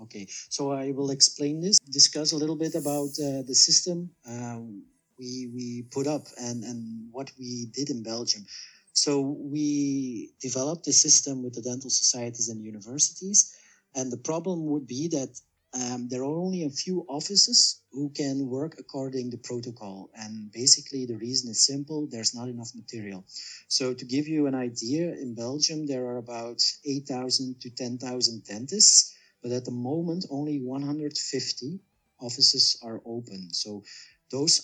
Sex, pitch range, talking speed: male, 120-145 Hz, 160 wpm